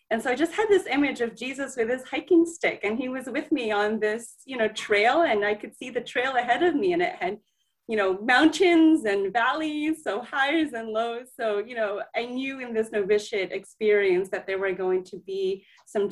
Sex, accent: female, American